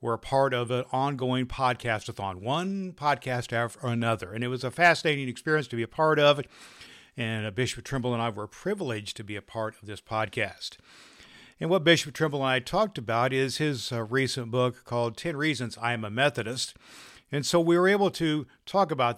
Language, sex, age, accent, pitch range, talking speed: English, male, 50-69, American, 115-145 Hz, 205 wpm